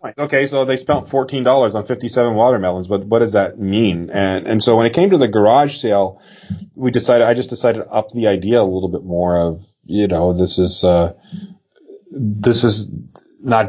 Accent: American